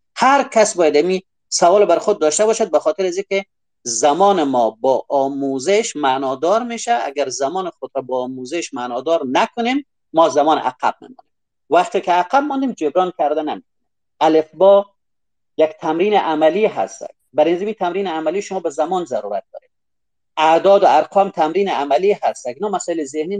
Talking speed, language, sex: 155 wpm, Persian, male